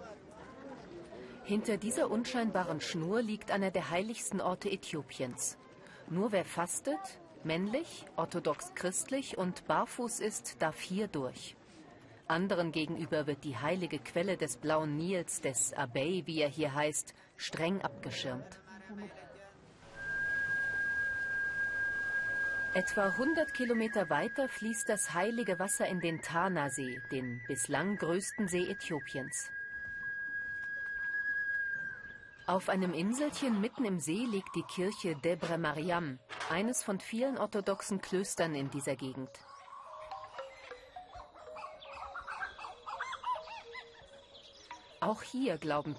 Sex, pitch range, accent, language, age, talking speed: female, 155-255 Hz, German, German, 40-59, 100 wpm